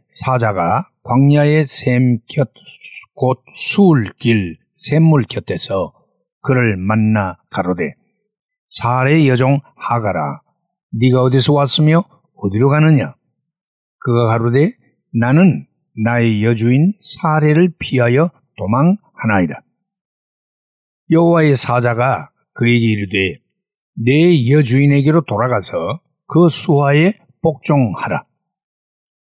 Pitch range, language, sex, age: 115-155 Hz, Korean, male, 60-79